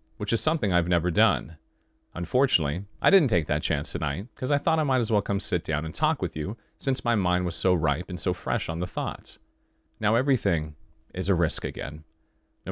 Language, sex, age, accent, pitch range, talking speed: English, male, 30-49, American, 85-110 Hz, 215 wpm